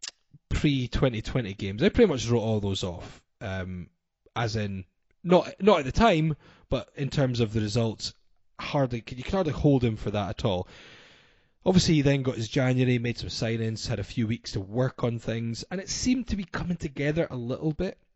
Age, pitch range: 20-39, 100-145 Hz